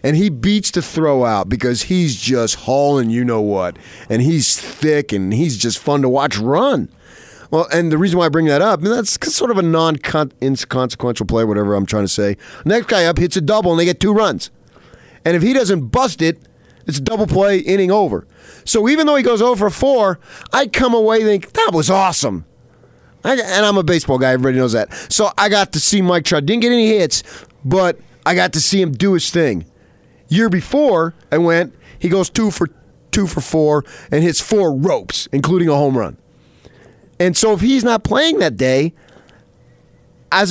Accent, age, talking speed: American, 30-49, 205 wpm